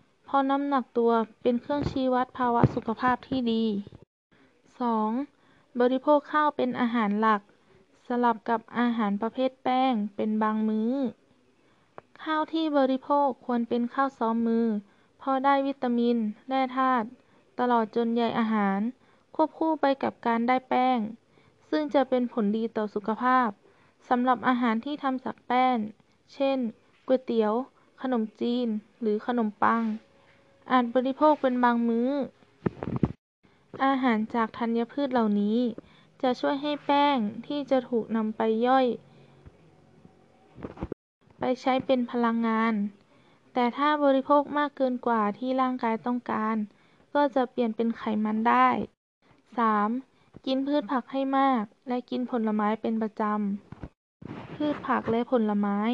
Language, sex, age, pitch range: Thai, female, 20-39, 225-265 Hz